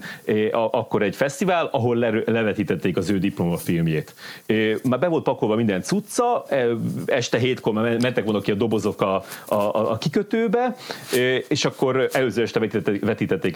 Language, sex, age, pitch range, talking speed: Hungarian, male, 30-49, 95-125 Hz, 140 wpm